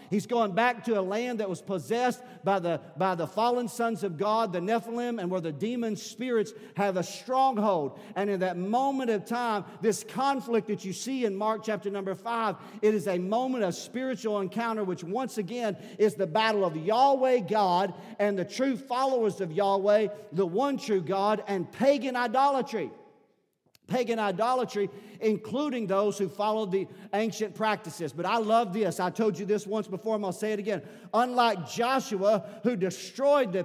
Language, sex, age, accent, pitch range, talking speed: English, male, 50-69, American, 195-235 Hz, 180 wpm